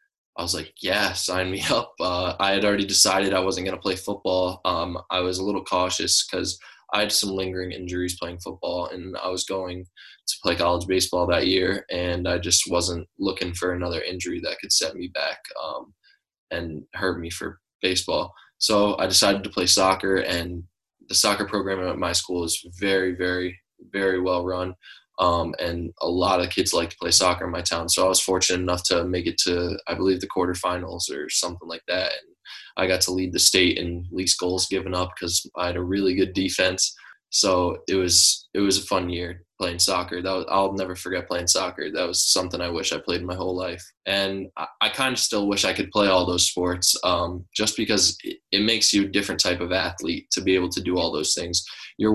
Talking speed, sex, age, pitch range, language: 215 wpm, male, 10-29, 90-95 Hz, English